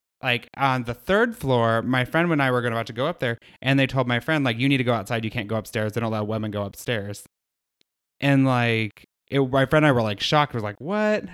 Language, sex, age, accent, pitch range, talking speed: English, male, 20-39, American, 110-135 Hz, 270 wpm